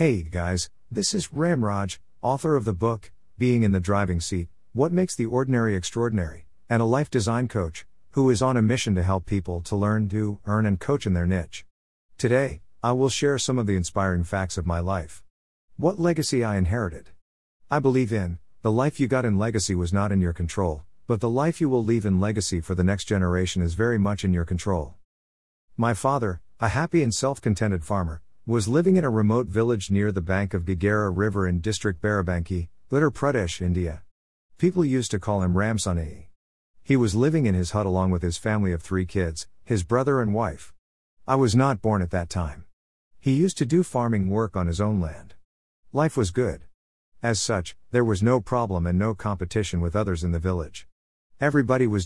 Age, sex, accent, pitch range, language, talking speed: 50-69, male, American, 90-120 Hz, English, 200 wpm